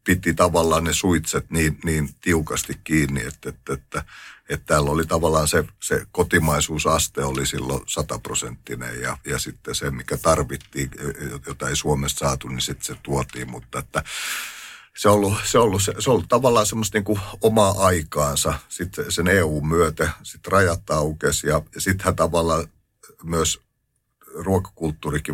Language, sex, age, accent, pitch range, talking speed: Finnish, male, 50-69, native, 70-85 Hz, 145 wpm